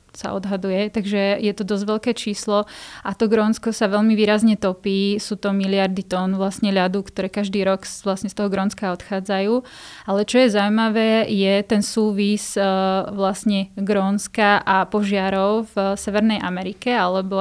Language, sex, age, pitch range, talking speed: Slovak, female, 20-39, 200-220 Hz, 150 wpm